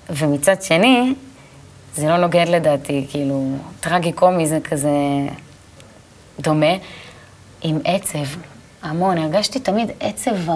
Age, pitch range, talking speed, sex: 20-39, 155-220 Hz, 95 wpm, female